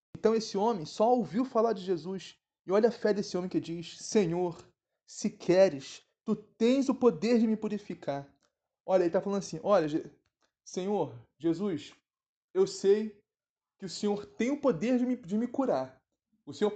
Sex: male